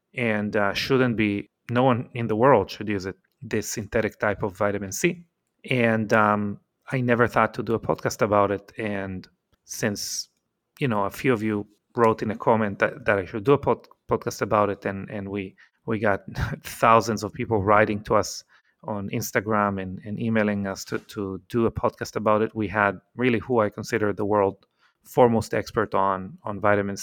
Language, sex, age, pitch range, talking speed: English, male, 30-49, 105-125 Hz, 195 wpm